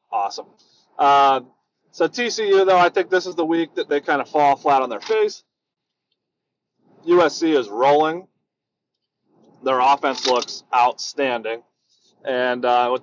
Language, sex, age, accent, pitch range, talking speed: English, male, 30-49, American, 125-150 Hz, 140 wpm